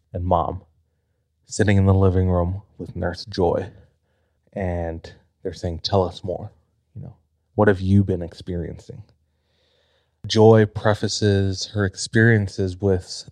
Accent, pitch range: American, 90-110 Hz